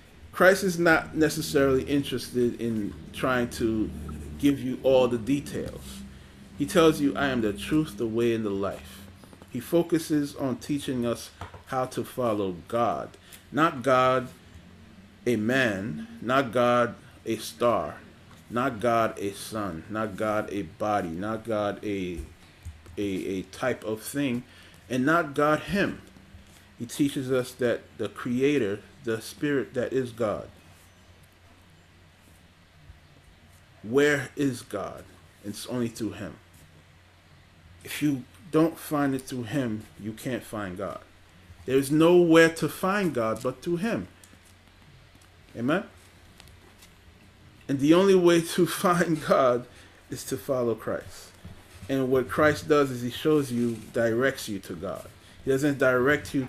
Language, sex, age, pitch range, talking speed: English, male, 30-49, 95-135 Hz, 135 wpm